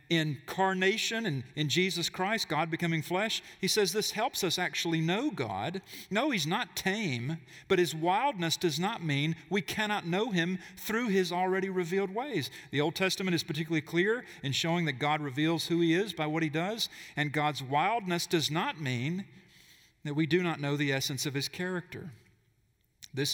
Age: 40-59